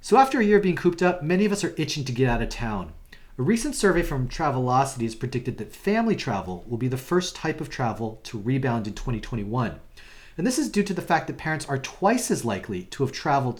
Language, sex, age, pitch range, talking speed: English, male, 40-59, 115-160 Hz, 245 wpm